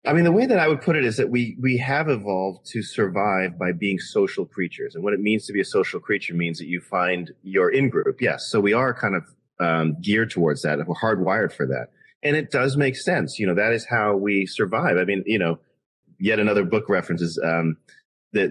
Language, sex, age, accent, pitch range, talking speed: English, male, 30-49, American, 90-125 Hz, 235 wpm